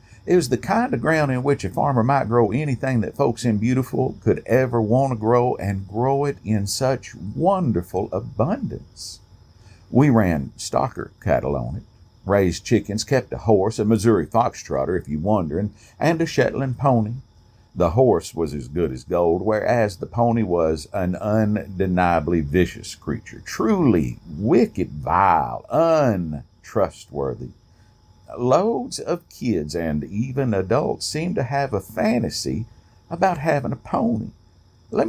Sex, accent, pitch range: male, American, 95-130 Hz